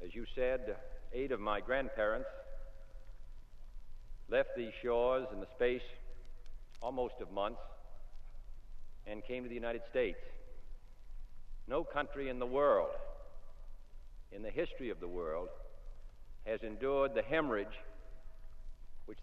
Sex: male